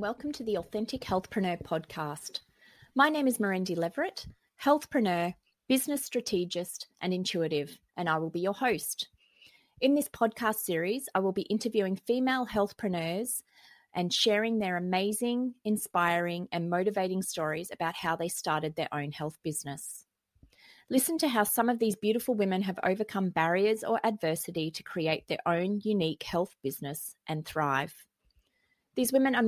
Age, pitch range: 30-49, 160-215 Hz